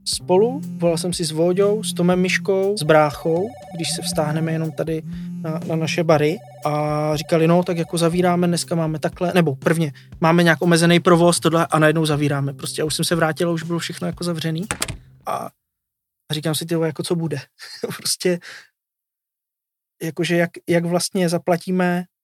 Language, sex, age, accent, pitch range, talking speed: Czech, male, 20-39, native, 155-175 Hz, 165 wpm